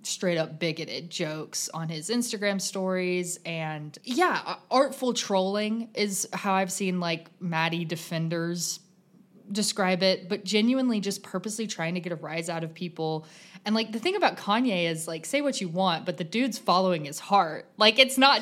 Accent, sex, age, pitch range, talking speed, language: American, female, 20-39, 170-225 Hz, 175 wpm, English